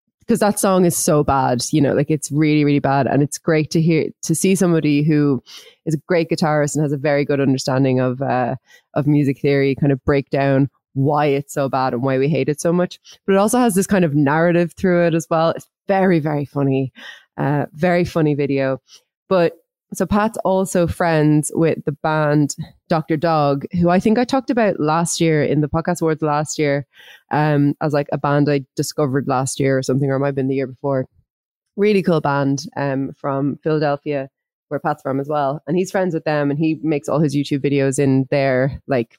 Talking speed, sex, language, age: 215 wpm, female, English, 20-39